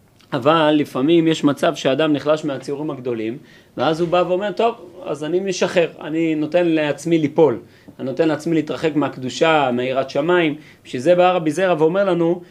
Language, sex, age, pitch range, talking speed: Hebrew, male, 30-49, 145-185 Hz, 155 wpm